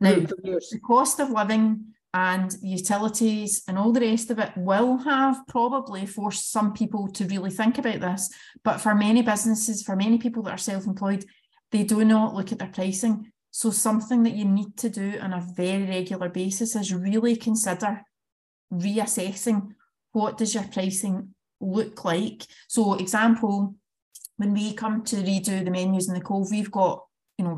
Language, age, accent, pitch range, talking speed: English, 30-49, British, 190-220 Hz, 170 wpm